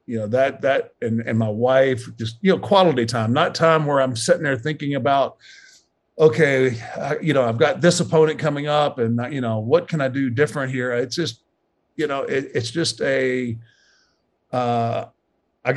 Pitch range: 115-145 Hz